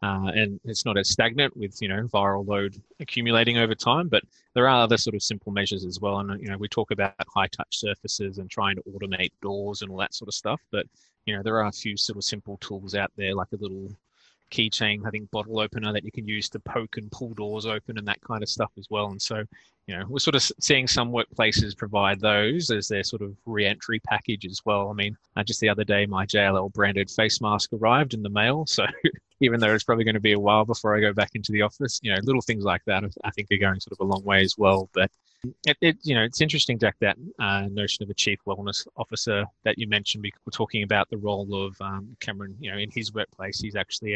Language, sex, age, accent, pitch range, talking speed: English, male, 20-39, Australian, 100-115 Hz, 255 wpm